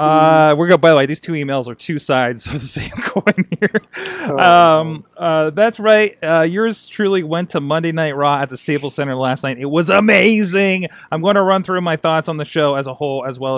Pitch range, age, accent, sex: 135-185 Hz, 30-49, American, male